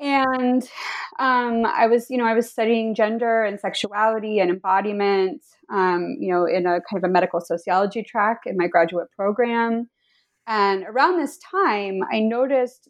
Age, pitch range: 20-39, 185-230 Hz